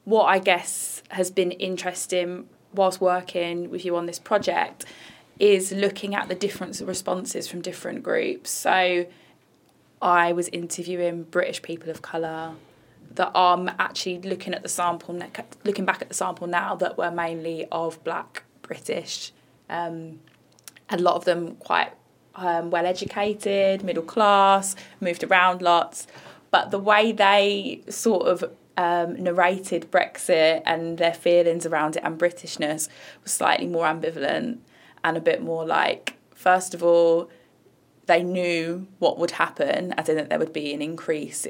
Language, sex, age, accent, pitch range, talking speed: English, female, 20-39, British, 165-185 Hz, 150 wpm